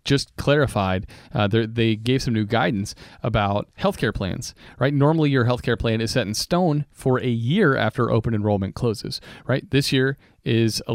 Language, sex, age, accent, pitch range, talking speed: English, male, 30-49, American, 110-140 Hz, 175 wpm